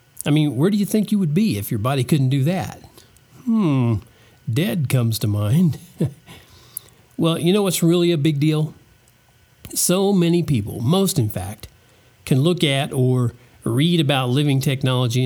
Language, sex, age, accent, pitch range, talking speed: English, male, 50-69, American, 120-170 Hz, 165 wpm